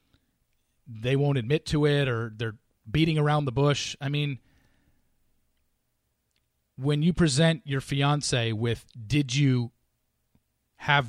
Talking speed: 120 wpm